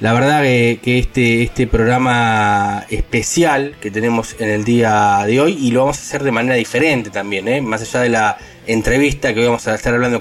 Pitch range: 110-125 Hz